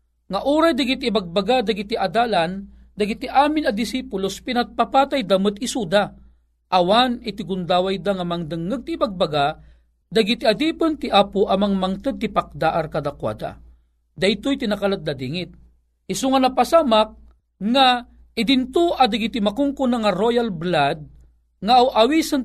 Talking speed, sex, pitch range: 135 wpm, male, 180-245 Hz